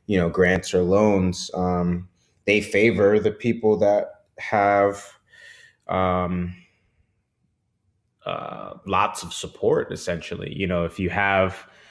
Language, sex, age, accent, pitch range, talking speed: English, male, 20-39, American, 85-100 Hz, 110 wpm